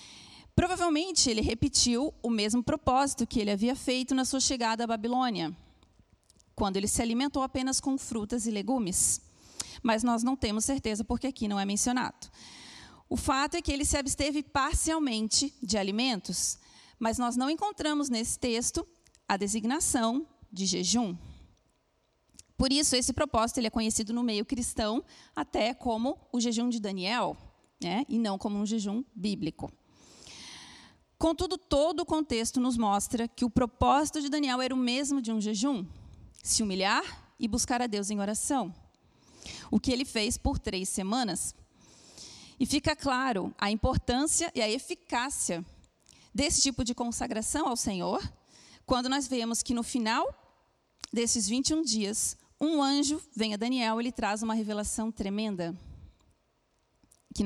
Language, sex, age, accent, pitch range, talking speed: Portuguese, female, 30-49, Brazilian, 215-270 Hz, 150 wpm